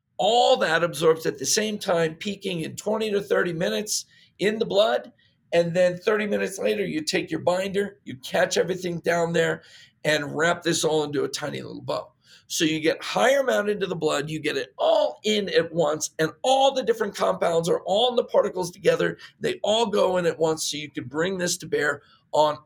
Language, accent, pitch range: English, American, 165-230 Hz